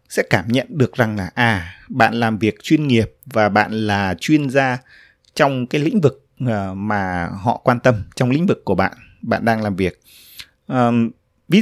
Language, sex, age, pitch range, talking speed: Vietnamese, male, 20-39, 105-145 Hz, 180 wpm